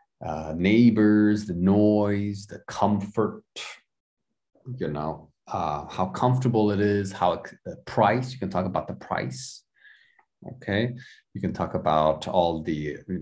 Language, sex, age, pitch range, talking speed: English, male, 30-49, 90-125 Hz, 135 wpm